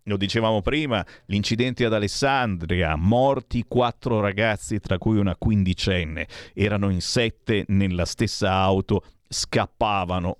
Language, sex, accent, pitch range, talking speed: Italian, male, native, 100-170 Hz, 115 wpm